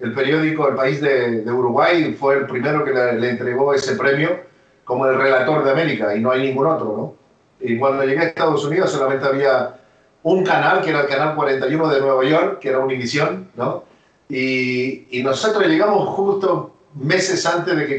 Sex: male